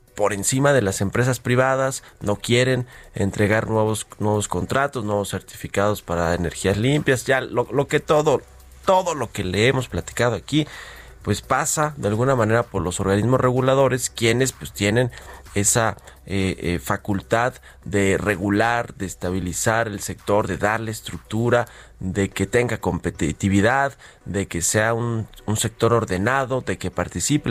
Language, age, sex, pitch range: Spanish, 30-49, male, 95-120 Hz